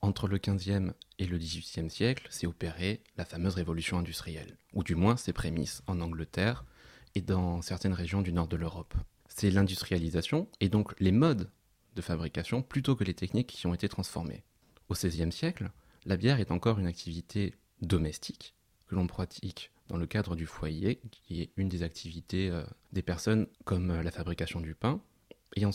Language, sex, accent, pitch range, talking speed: French, male, French, 85-110 Hz, 175 wpm